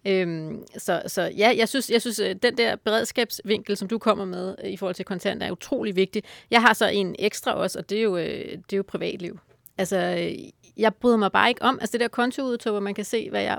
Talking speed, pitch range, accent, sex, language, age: 235 wpm, 195-240 Hz, native, female, Danish, 30-49